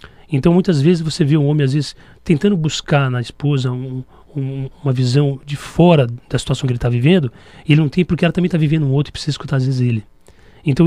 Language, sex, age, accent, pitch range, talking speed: Portuguese, male, 40-59, Brazilian, 130-155 Hz, 225 wpm